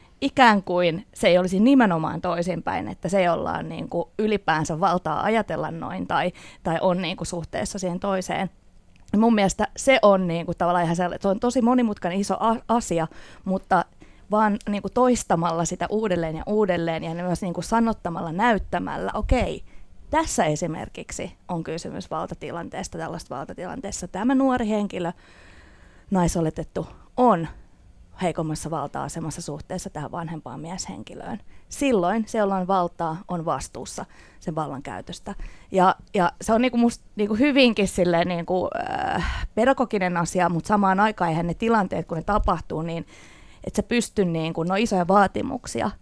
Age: 20-39